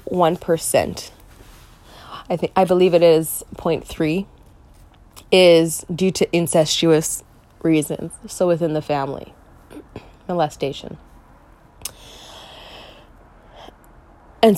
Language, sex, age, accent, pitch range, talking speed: English, female, 20-39, American, 145-190 Hz, 80 wpm